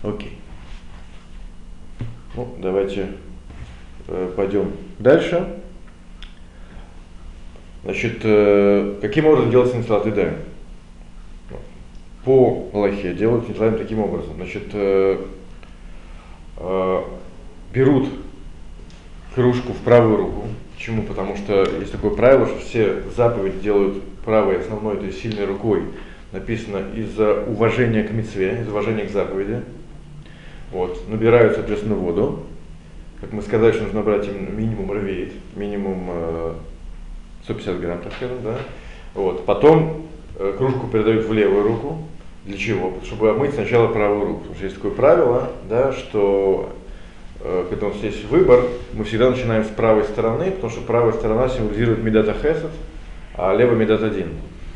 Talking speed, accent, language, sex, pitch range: 130 wpm, native, Russian, male, 90-115 Hz